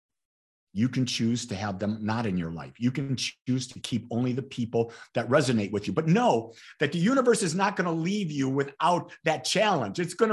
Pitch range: 120-190 Hz